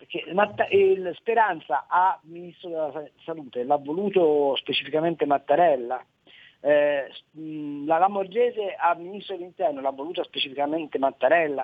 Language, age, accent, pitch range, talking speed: Italian, 40-59, native, 145-205 Hz, 110 wpm